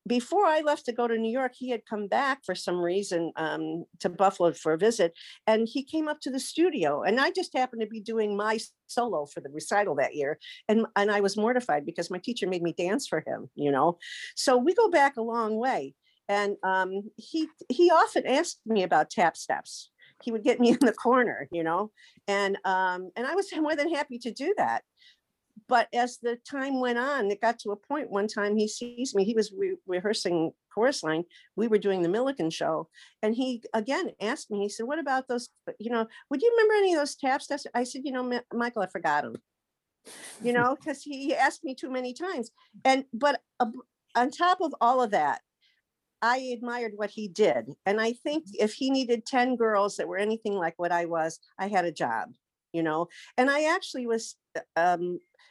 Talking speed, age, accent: 215 wpm, 50-69, American